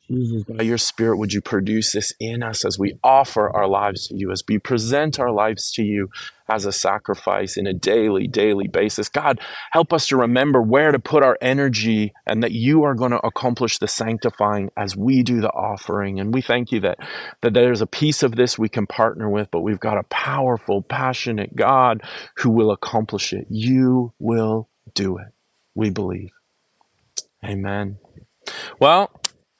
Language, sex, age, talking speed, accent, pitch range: English, male, 30-49, 180 wpm, American, 100-125 Hz